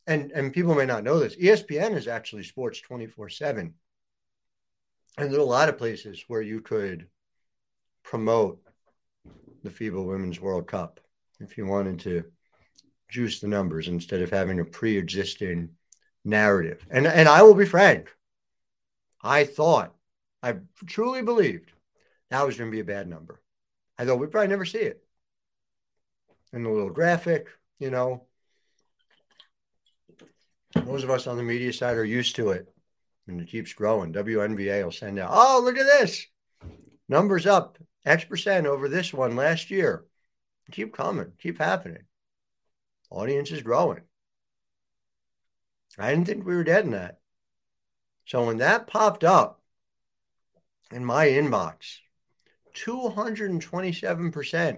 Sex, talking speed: male, 140 wpm